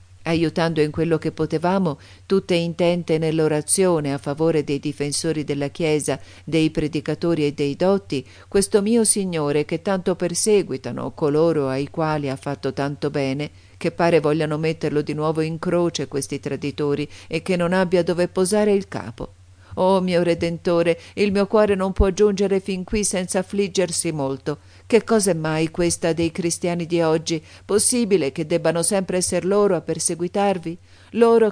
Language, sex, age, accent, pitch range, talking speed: Italian, female, 50-69, native, 155-190 Hz, 155 wpm